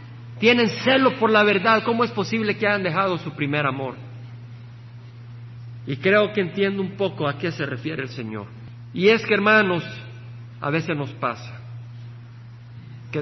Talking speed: 160 wpm